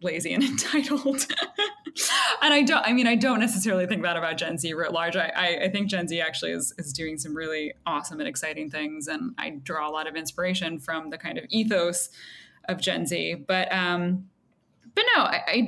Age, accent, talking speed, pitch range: 20-39, American, 210 wpm, 170-220 Hz